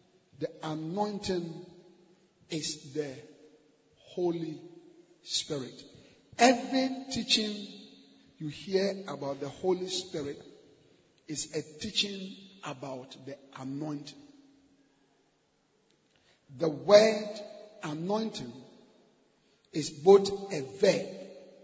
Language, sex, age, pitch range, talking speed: English, male, 50-69, 155-200 Hz, 75 wpm